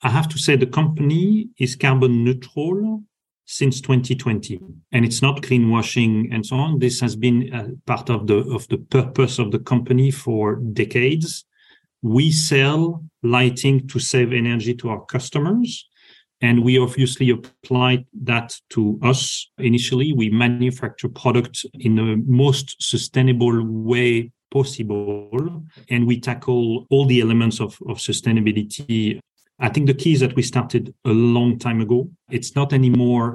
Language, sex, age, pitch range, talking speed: English, male, 40-59, 115-130 Hz, 150 wpm